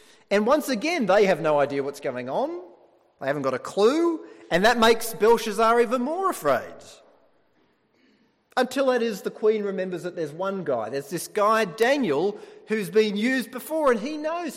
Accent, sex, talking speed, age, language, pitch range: Australian, male, 175 wpm, 30-49, English, 155-235 Hz